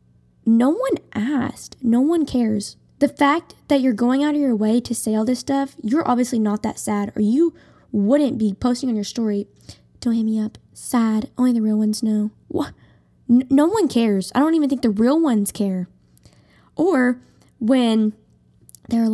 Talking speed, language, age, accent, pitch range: 180 wpm, English, 10-29, American, 210-255 Hz